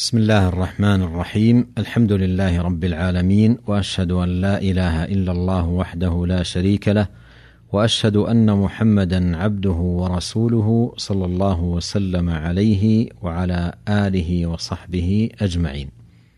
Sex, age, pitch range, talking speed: male, 50-69, 90-115 Hz, 115 wpm